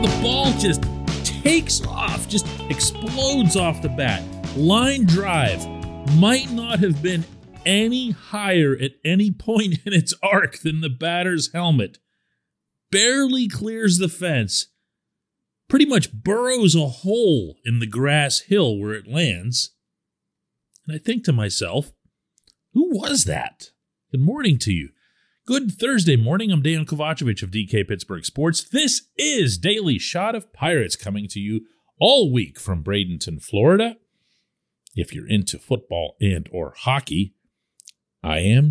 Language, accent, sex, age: English, American, male, 40-59